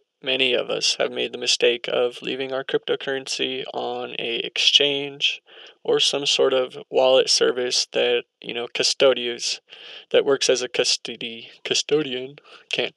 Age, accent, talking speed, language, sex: 20-39, American, 145 wpm, English, male